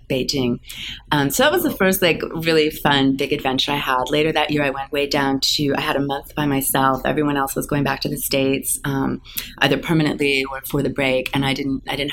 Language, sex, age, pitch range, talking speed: English, female, 30-49, 130-145 Hz, 240 wpm